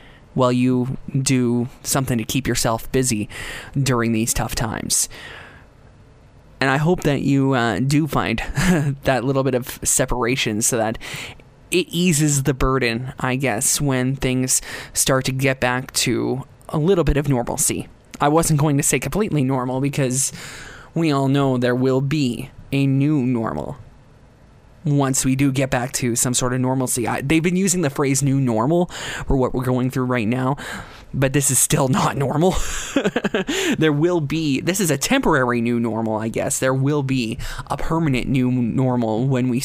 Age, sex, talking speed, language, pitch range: 20-39, male, 170 wpm, English, 120-140 Hz